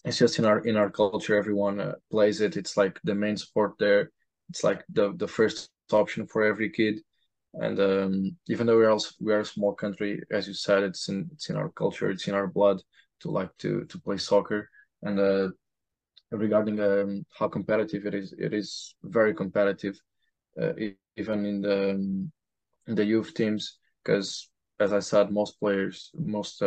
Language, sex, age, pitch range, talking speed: English, male, 20-39, 95-105 Hz, 190 wpm